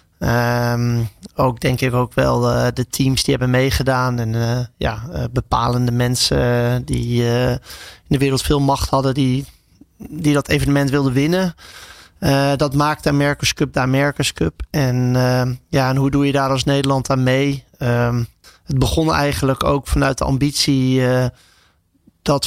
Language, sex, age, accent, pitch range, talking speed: Dutch, male, 20-39, Dutch, 125-140 Hz, 170 wpm